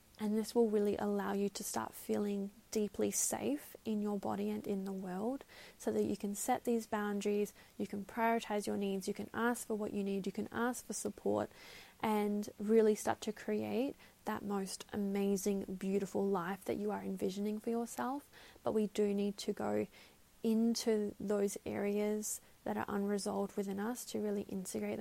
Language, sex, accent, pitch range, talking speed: English, female, Australian, 200-220 Hz, 180 wpm